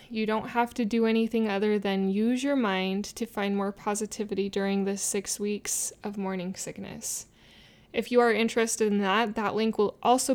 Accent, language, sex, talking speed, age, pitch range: American, English, female, 185 wpm, 20-39, 205-235 Hz